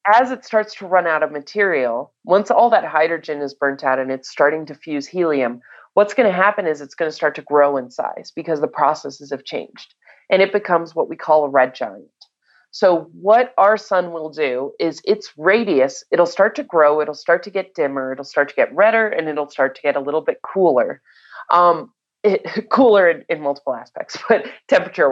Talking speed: 215 wpm